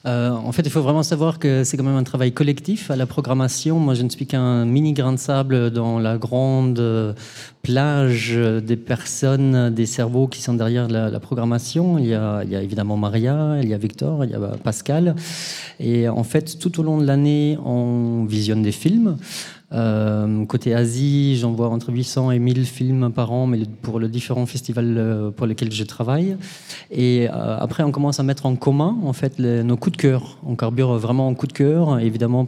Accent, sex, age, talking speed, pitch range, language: French, male, 30-49, 205 wpm, 120-145 Hz, French